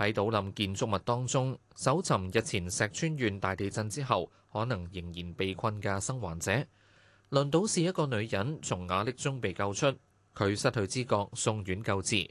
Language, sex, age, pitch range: Chinese, male, 20-39, 100-130 Hz